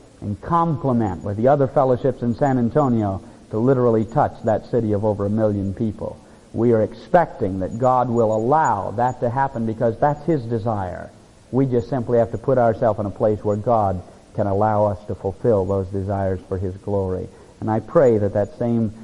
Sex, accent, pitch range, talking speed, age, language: male, American, 105-135 Hz, 190 wpm, 50-69, English